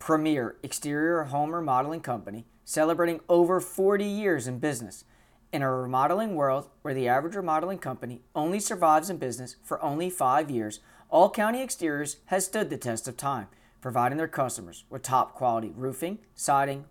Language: English